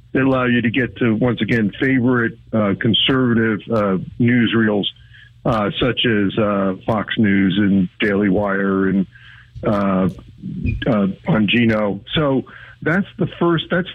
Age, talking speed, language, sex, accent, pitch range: 50-69, 140 wpm, English, male, American, 115-140 Hz